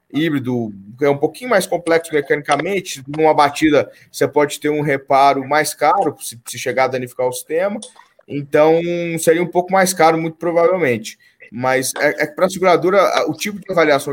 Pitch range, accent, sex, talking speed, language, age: 125-170 Hz, Brazilian, male, 175 wpm, Portuguese, 20-39